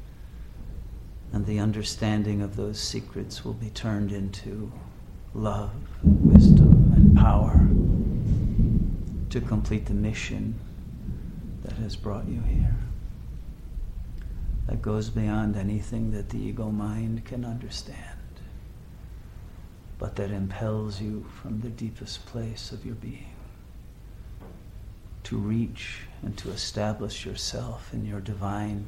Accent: American